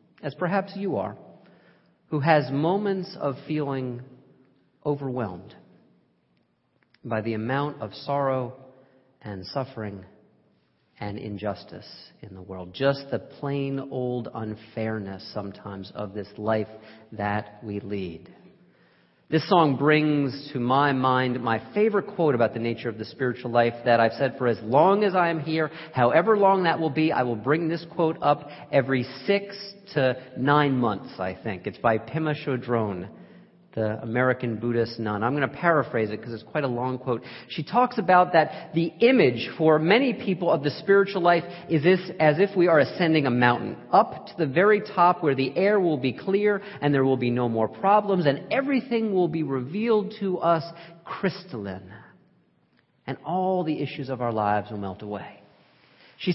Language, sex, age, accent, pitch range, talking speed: English, male, 40-59, American, 115-170 Hz, 165 wpm